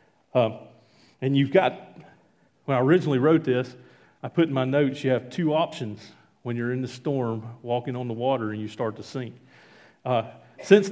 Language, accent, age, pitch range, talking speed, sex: English, American, 40-59, 120-155 Hz, 185 wpm, male